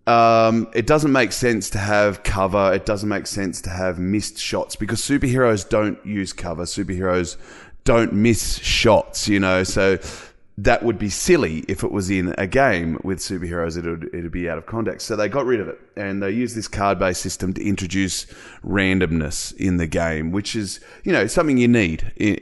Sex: male